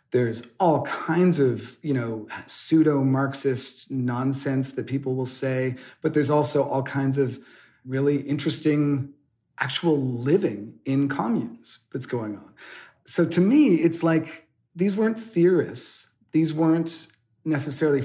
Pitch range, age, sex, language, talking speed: 125-150 Hz, 40-59, male, English, 120 wpm